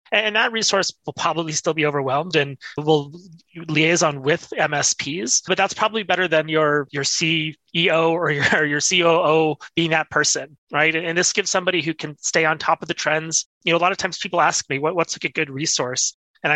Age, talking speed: 30-49, 210 wpm